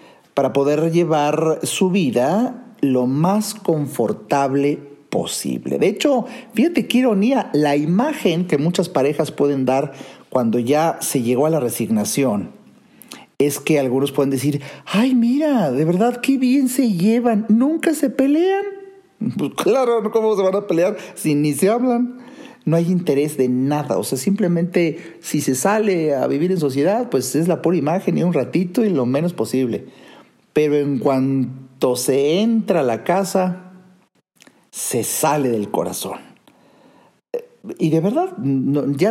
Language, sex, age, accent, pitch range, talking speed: Spanish, male, 50-69, Mexican, 135-205 Hz, 150 wpm